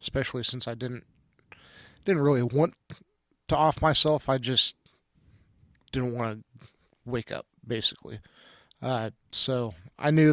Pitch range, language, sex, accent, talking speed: 115-135 Hz, English, male, American, 130 wpm